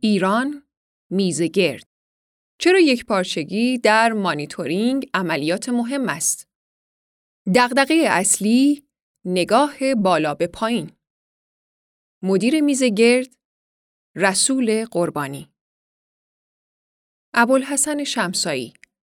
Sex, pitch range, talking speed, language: female, 180-250 Hz, 75 wpm, Persian